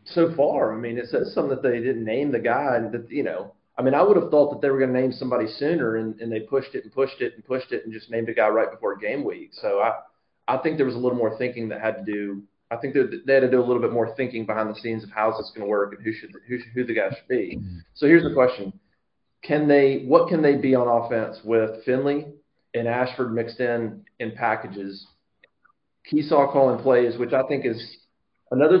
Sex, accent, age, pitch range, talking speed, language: male, American, 30-49, 115-135 Hz, 255 wpm, English